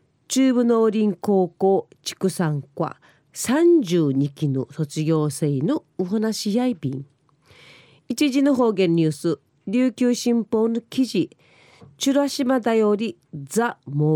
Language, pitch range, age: Japanese, 150-235 Hz, 40-59